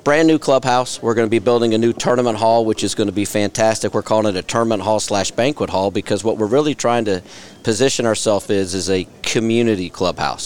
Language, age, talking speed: English, 40-59, 230 wpm